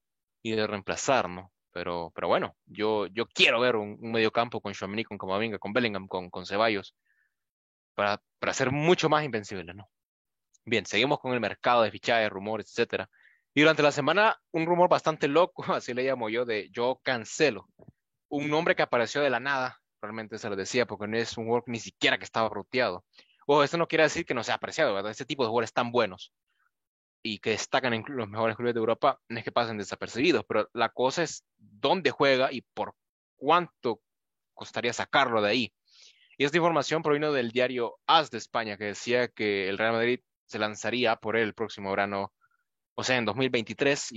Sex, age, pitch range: male, 20-39, 105-145 Hz